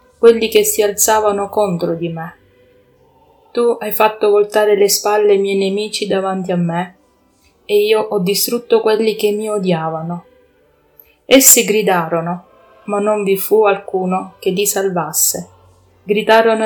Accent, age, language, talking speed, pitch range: native, 30-49, Italian, 135 wpm, 190-225 Hz